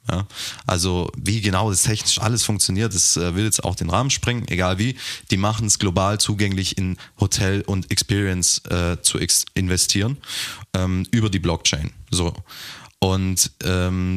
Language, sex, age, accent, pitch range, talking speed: German, male, 20-39, German, 90-110 Hz, 160 wpm